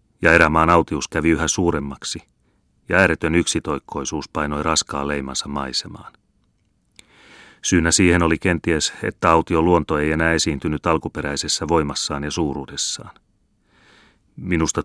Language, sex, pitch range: Finnish, male, 70-85 Hz